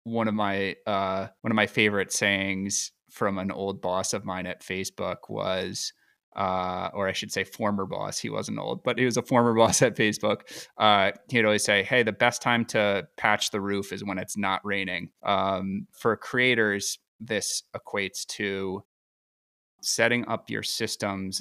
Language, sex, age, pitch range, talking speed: English, male, 20-39, 95-115 Hz, 180 wpm